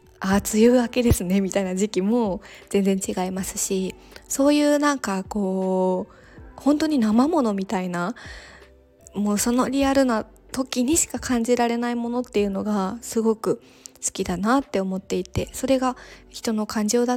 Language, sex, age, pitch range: Japanese, female, 20-39, 190-250 Hz